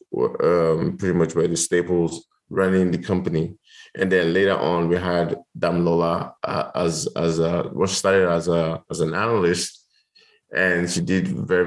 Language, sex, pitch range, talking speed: English, male, 85-95 Hz, 165 wpm